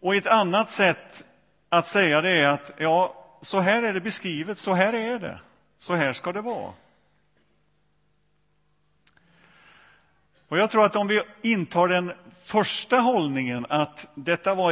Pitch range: 150-195 Hz